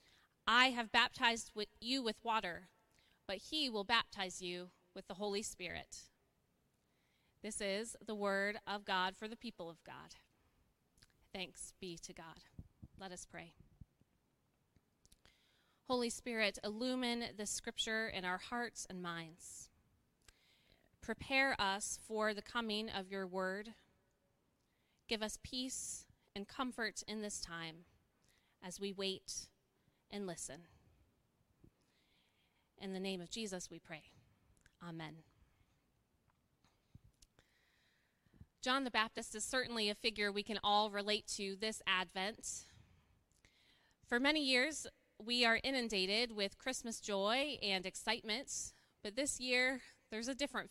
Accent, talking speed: American, 120 wpm